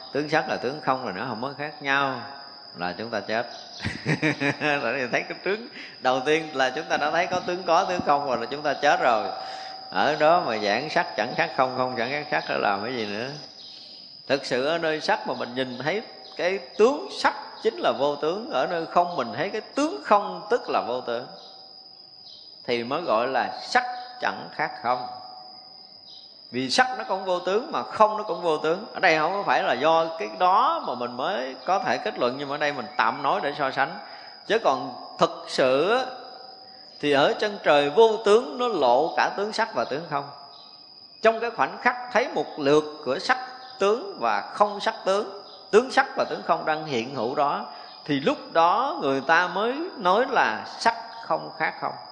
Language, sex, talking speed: Vietnamese, male, 205 wpm